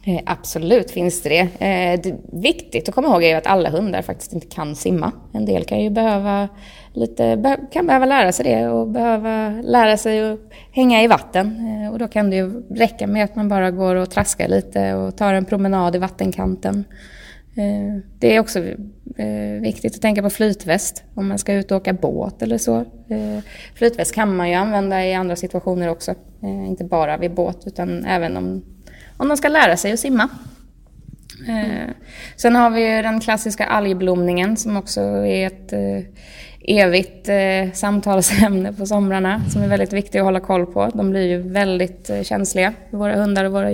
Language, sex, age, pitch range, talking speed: Swedish, female, 20-39, 175-210 Hz, 175 wpm